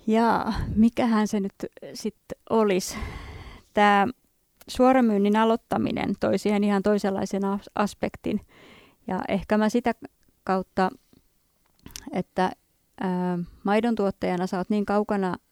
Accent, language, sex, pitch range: native, Finnish, female, 185-215 Hz